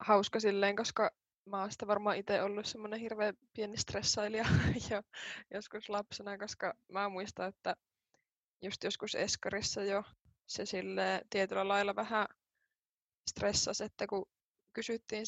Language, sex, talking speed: Finnish, female, 125 wpm